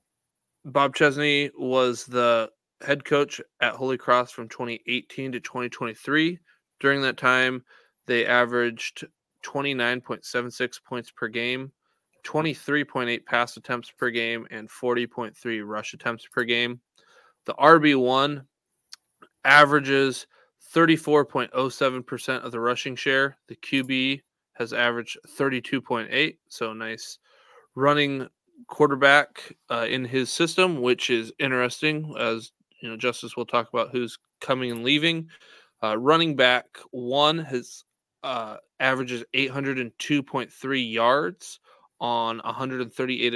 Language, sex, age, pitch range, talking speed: English, male, 20-39, 120-140 Hz, 110 wpm